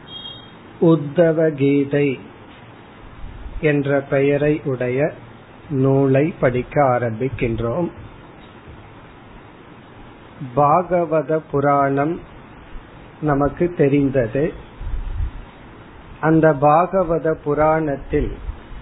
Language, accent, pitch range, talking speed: Tamil, native, 130-160 Hz, 40 wpm